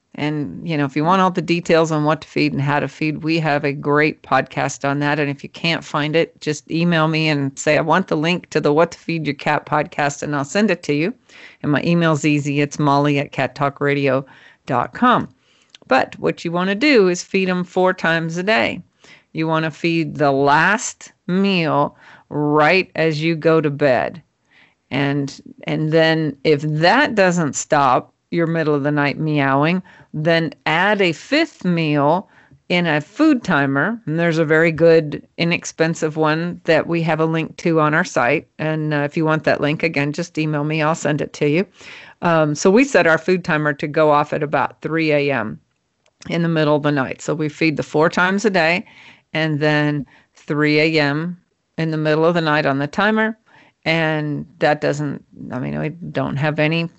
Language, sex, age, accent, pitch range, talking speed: English, female, 40-59, American, 145-170 Hz, 200 wpm